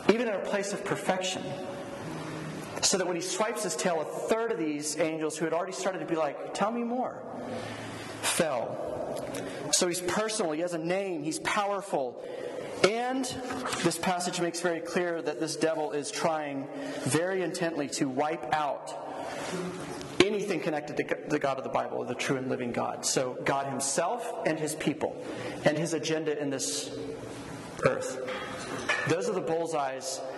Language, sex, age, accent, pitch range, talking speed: English, male, 40-59, American, 155-190 Hz, 165 wpm